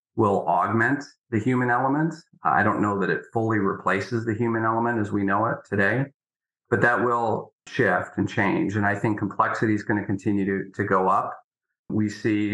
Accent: American